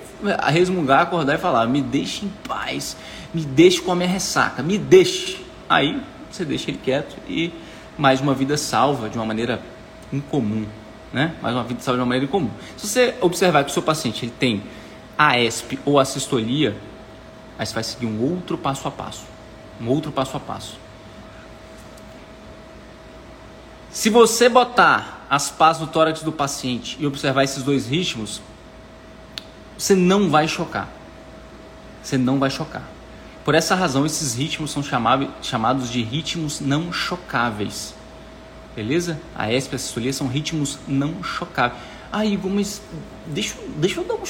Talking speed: 160 wpm